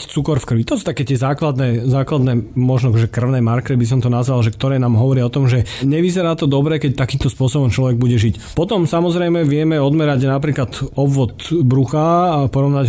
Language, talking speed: Slovak, 195 wpm